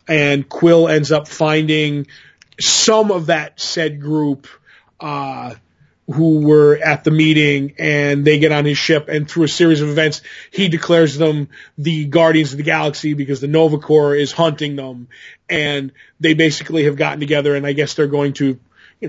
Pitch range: 145-165 Hz